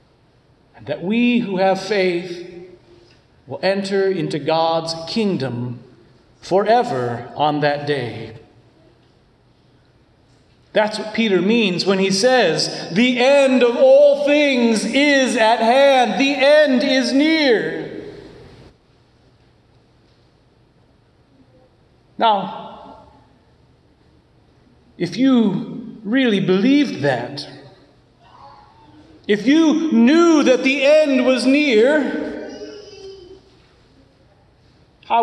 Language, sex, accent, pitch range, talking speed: English, male, American, 180-275 Hz, 80 wpm